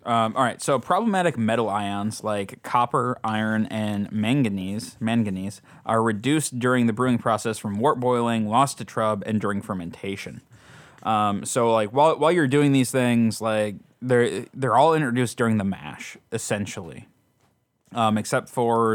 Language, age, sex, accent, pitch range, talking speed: English, 20-39, male, American, 105-120 Hz, 155 wpm